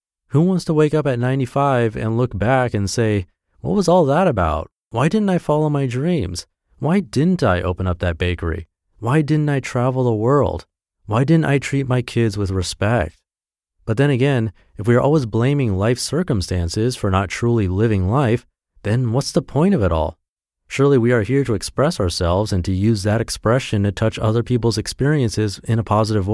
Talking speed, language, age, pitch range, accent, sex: 195 wpm, English, 30-49, 90-130 Hz, American, male